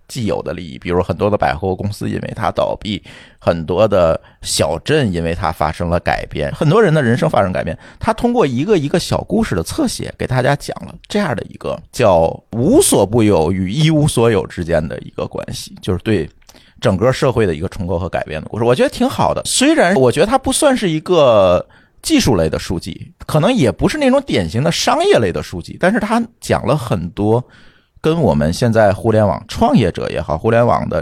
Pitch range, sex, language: 100-160 Hz, male, Chinese